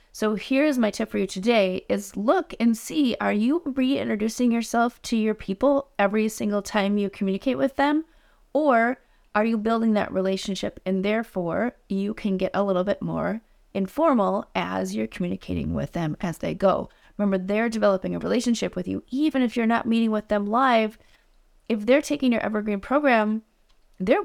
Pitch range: 190-235 Hz